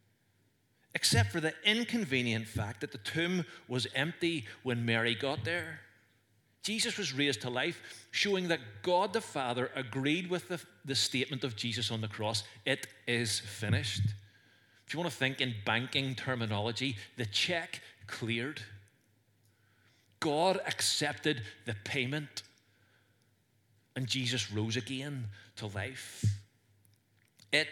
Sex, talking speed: male, 130 wpm